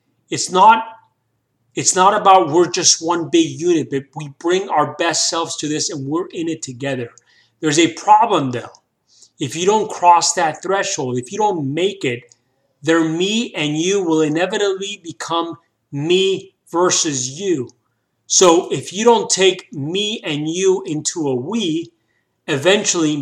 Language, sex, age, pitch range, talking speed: English, male, 30-49, 145-185 Hz, 150 wpm